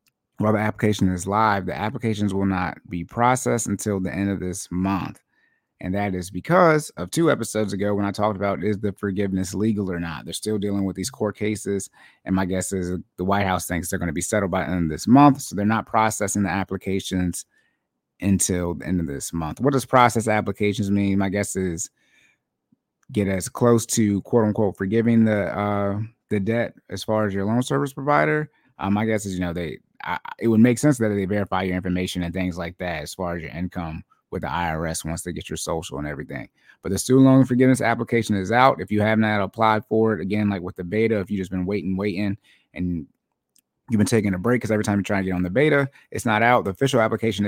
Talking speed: 230 wpm